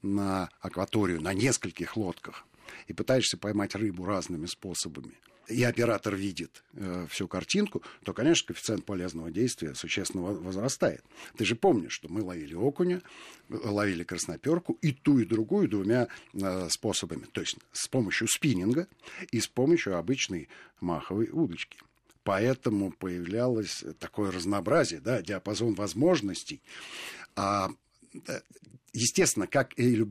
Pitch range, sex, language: 95-130 Hz, male, Russian